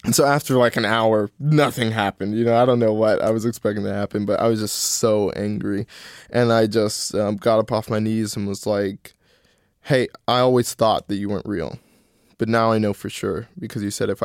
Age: 20-39